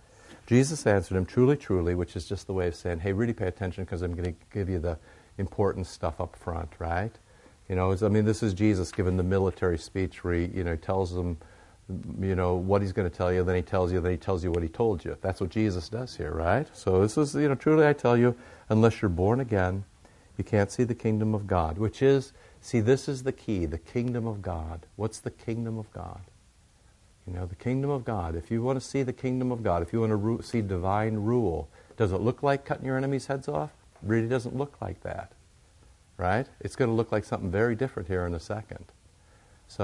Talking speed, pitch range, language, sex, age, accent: 240 wpm, 90-115 Hz, English, male, 50-69, American